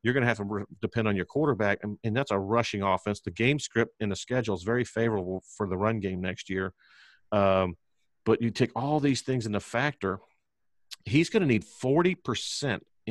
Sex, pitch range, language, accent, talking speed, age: male, 100-120 Hz, English, American, 195 wpm, 50-69